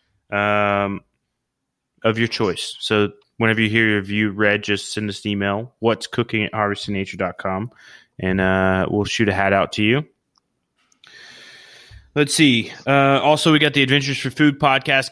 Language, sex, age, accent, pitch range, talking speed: English, male, 20-39, American, 105-120 Hz, 155 wpm